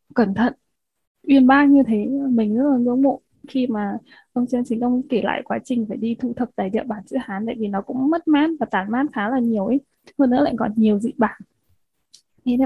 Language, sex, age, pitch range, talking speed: Vietnamese, female, 10-29, 225-270 Hz, 240 wpm